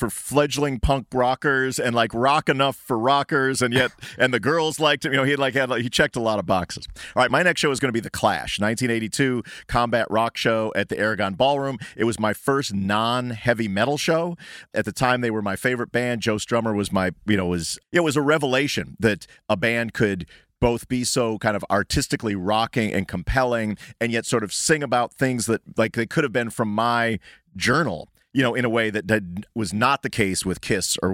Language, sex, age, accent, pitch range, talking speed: English, male, 40-59, American, 100-130 Hz, 225 wpm